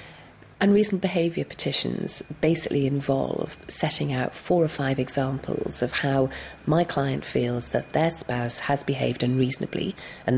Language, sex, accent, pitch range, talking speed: English, female, British, 130-155 Hz, 135 wpm